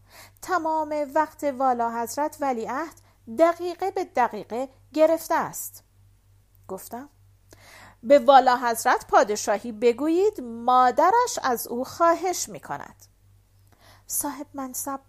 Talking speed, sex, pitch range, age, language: 100 wpm, female, 200-325 Hz, 50-69, Persian